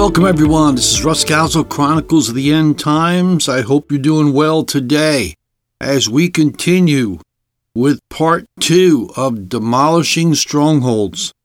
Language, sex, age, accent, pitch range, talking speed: English, male, 60-79, American, 120-155 Hz, 135 wpm